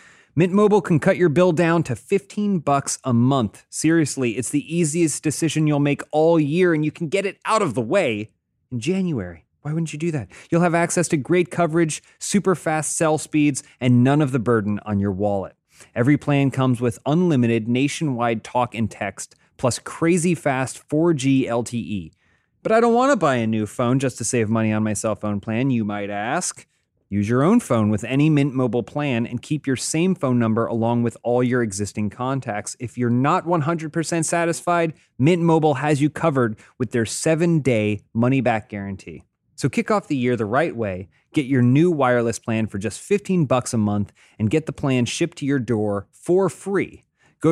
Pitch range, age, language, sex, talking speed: 115-165 Hz, 30-49, English, male, 195 wpm